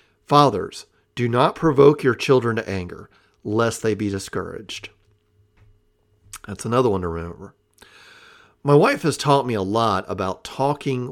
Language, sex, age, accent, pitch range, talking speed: English, male, 50-69, American, 105-145 Hz, 140 wpm